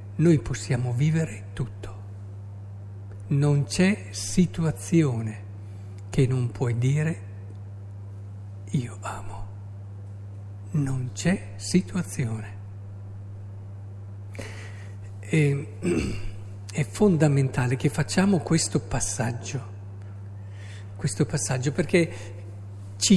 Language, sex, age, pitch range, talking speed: Italian, male, 50-69, 100-155 Hz, 65 wpm